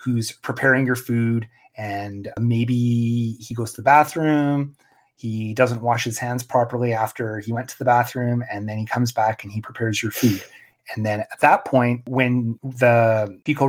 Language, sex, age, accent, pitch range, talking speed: English, male, 30-49, American, 115-130 Hz, 180 wpm